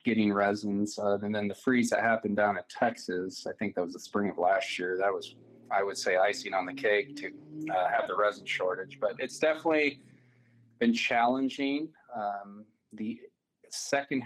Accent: American